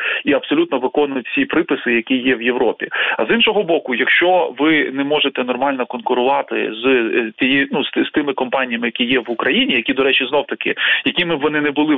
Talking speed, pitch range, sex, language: 195 wpm, 130-165 Hz, male, Ukrainian